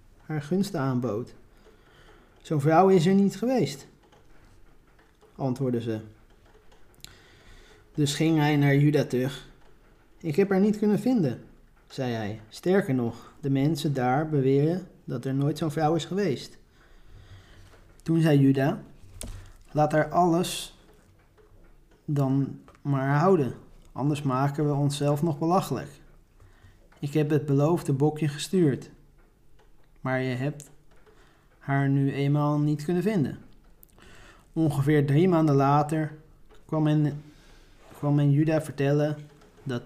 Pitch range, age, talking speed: 130-155 Hz, 20-39, 115 wpm